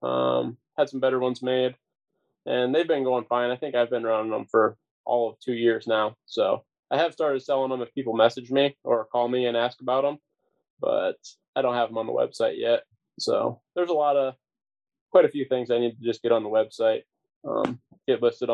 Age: 20-39